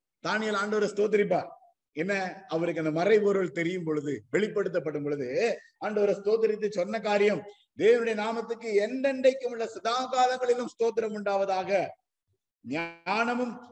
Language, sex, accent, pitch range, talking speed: Tamil, male, native, 175-240 Hz, 100 wpm